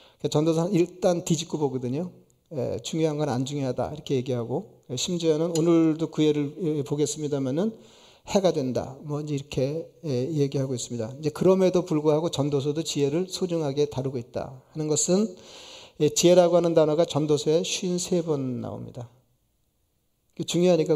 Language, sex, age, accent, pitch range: Korean, male, 40-59, native, 135-165 Hz